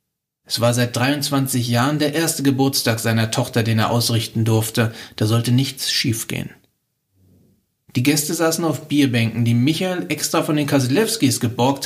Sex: male